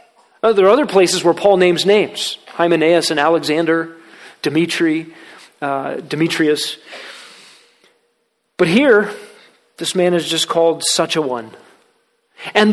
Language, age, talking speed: English, 40-59, 115 wpm